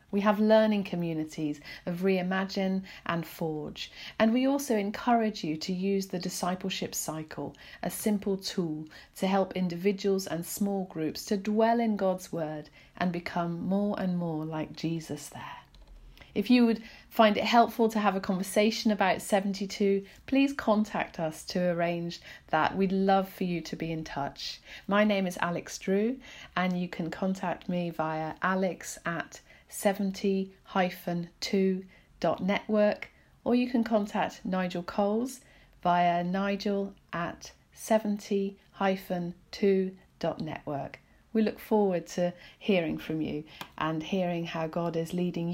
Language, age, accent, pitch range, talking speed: English, 40-59, British, 170-205 Hz, 135 wpm